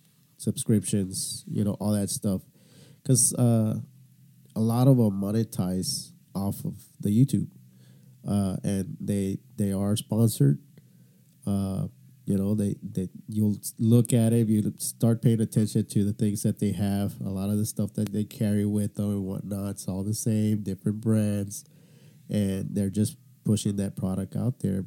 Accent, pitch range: American, 105-130 Hz